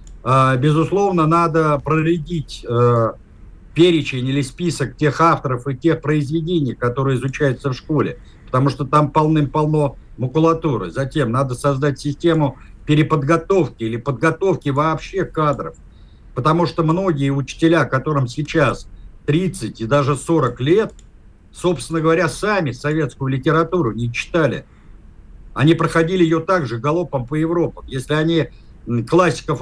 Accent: native